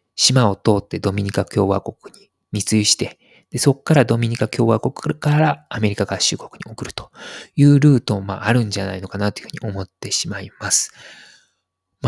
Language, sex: Japanese, male